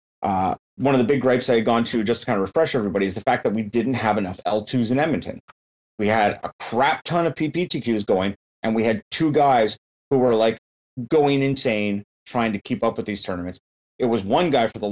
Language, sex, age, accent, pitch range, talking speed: English, male, 30-49, American, 100-125 Hz, 235 wpm